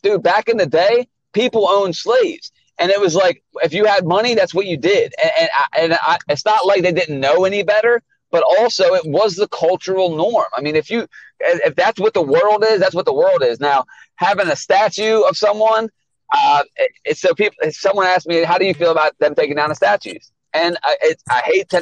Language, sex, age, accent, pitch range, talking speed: English, male, 30-49, American, 175-270 Hz, 230 wpm